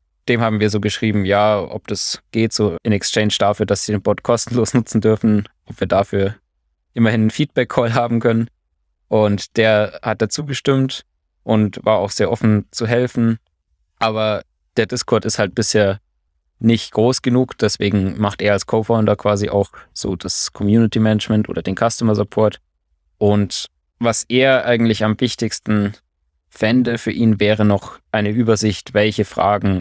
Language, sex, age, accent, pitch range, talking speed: German, male, 20-39, German, 95-110 Hz, 155 wpm